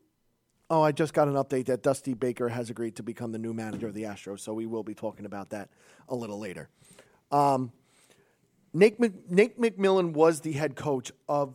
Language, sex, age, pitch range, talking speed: English, male, 40-59, 130-205 Hz, 205 wpm